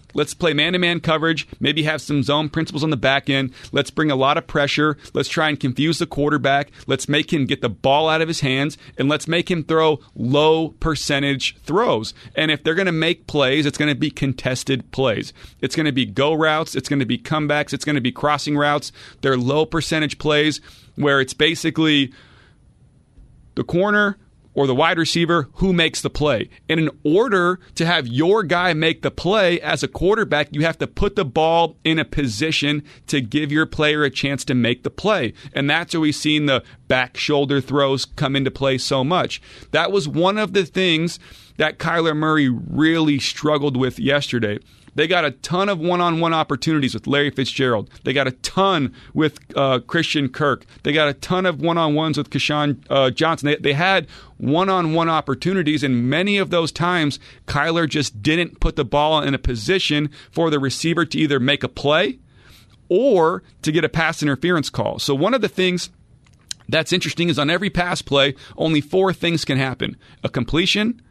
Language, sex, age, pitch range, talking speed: English, male, 40-59, 140-165 Hz, 190 wpm